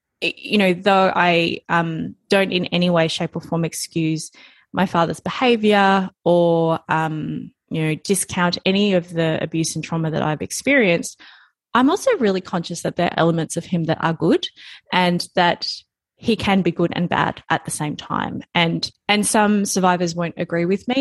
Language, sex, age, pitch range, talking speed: English, female, 20-39, 165-190 Hz, 180 wpm